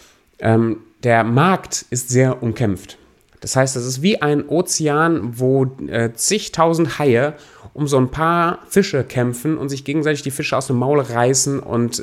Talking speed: 155 wpm